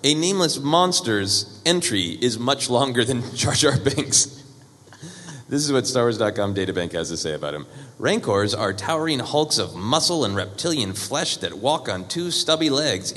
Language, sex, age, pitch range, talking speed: English, male, 30-49, 100-140 Hz, 170 wpm